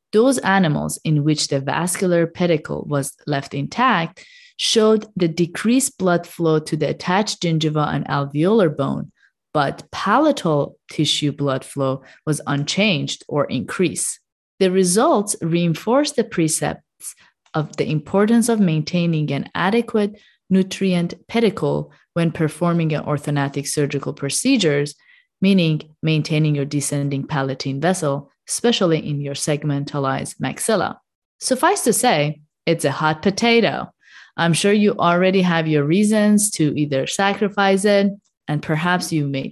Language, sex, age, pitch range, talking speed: English, female, 30-49, 150-210 Hz, 130 wpm